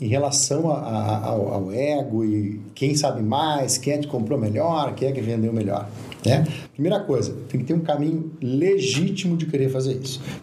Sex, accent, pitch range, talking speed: male, Brazilian, 125-165 Hz, 200 wpm